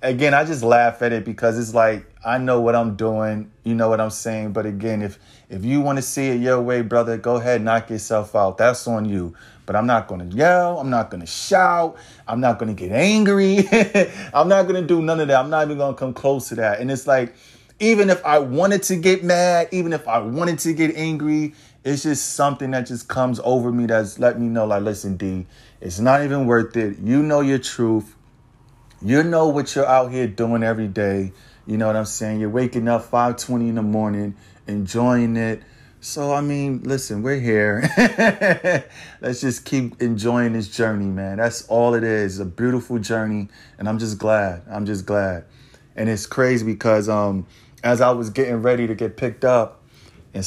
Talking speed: 215 wpm